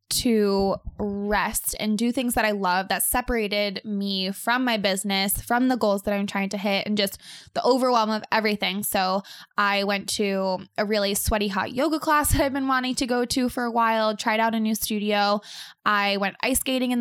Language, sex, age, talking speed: English, female, 20-39, 205 wpm